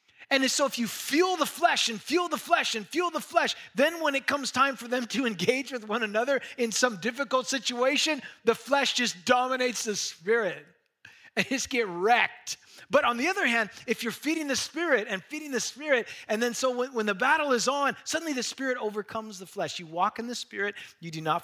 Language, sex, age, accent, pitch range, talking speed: English, male, 20-39, American, 185-290 Hz, 220 wpm